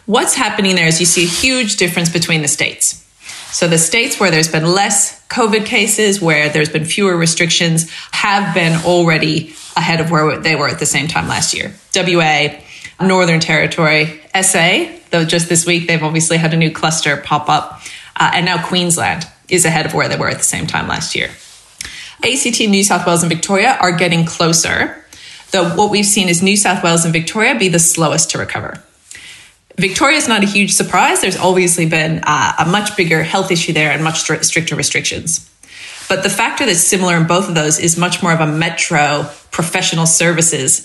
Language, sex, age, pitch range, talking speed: English, female, 30-49, 160-190 Hz, 195 wpm